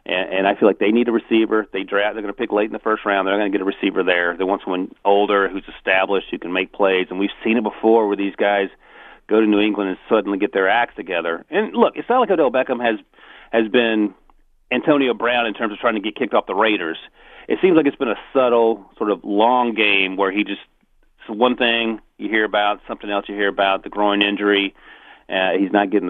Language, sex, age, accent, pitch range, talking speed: English, male, 40-59, American, 95-115 Hz, 250 wpm